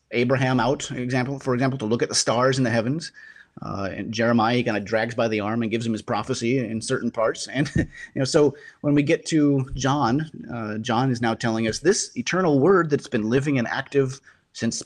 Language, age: English, 30-49